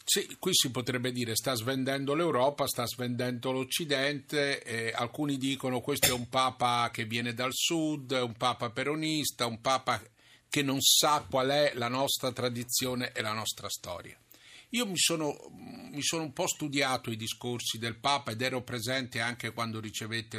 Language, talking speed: Italian, 170 wpm